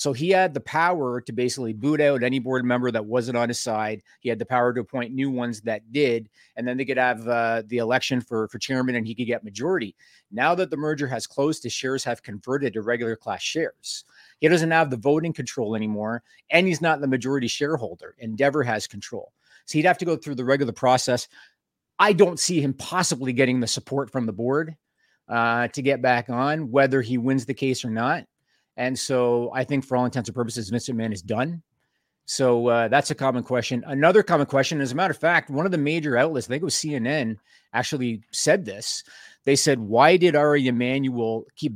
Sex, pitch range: male, 120-150 Hz